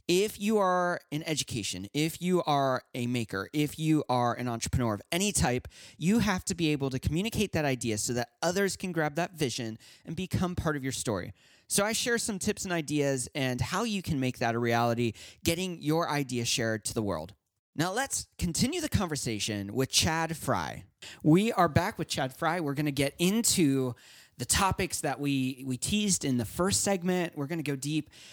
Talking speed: 200 wpm